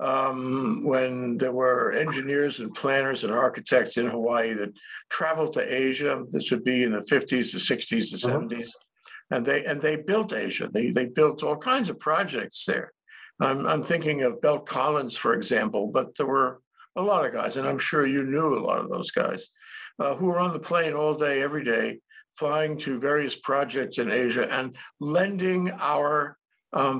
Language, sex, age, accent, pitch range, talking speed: English, male, 60-79, American, 135-185 Hz, 185 wpm